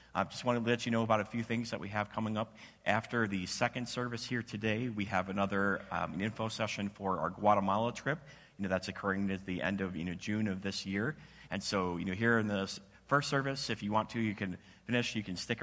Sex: male